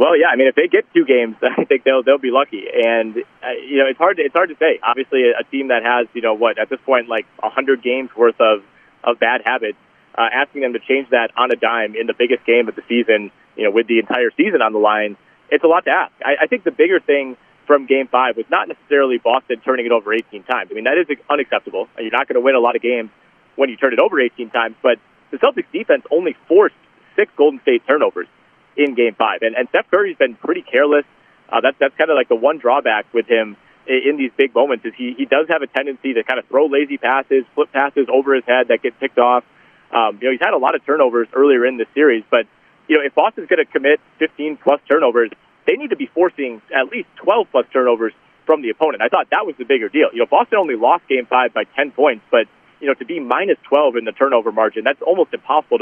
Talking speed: 260 wpm